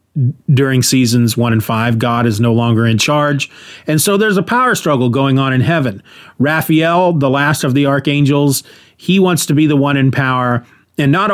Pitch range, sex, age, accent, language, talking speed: 130-175 Hz, male, 30-49, American, English, 195 wpm